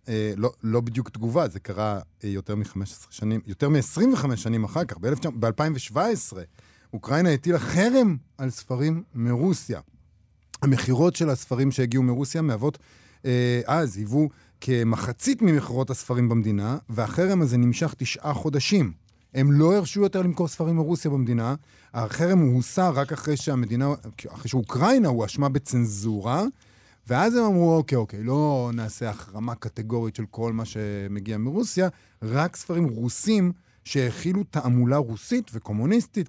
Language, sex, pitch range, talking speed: Hebrew, male, 110-150 Hz, 125 wpm